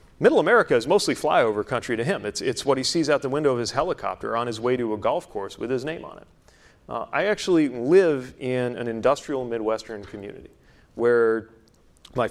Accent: American